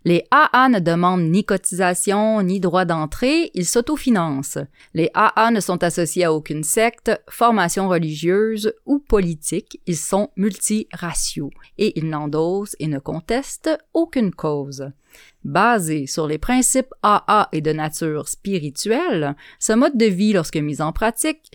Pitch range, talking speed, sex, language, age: 155-220 Hz, 140 wpm, female, French, 30-49